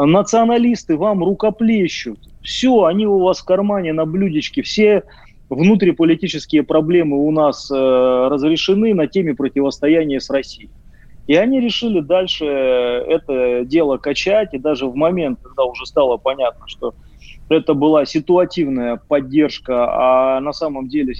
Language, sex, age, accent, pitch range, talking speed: Russian, male, 30-49, native, 130-165 Hz, 135 wpm